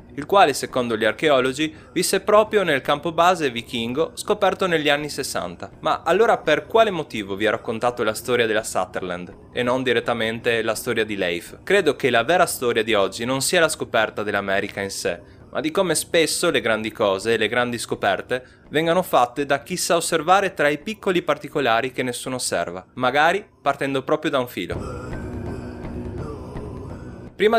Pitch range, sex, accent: 115-165 Hz, male, native